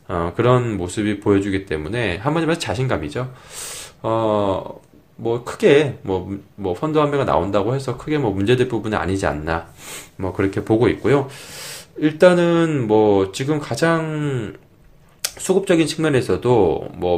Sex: male